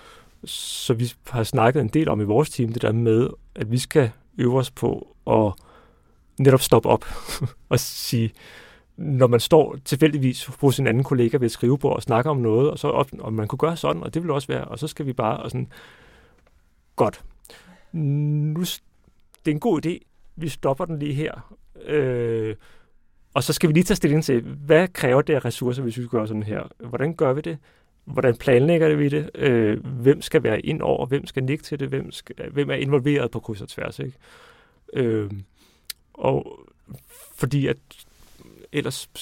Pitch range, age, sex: 115-150 Hz, 30-49, male